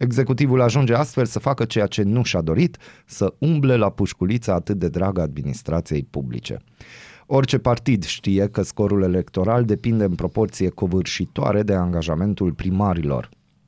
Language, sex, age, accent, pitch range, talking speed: Romanian, male, 30-49, native, 90-115 Hz, 140 wpm